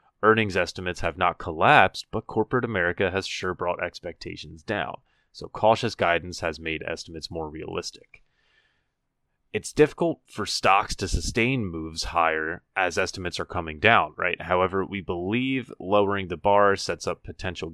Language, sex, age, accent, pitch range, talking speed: English, male, 30-49, American, 85-115 Hz, 150 wpm